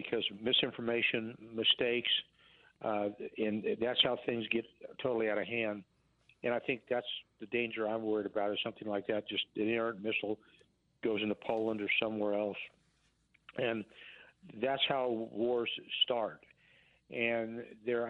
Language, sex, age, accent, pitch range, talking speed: English, male, 60-79, American, 105-120 Hz, 145 wpm